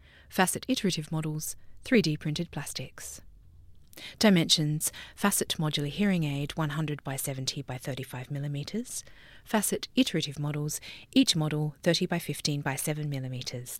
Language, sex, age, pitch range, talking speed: English, female, 30-49, 140-180 Hz, 115 wpm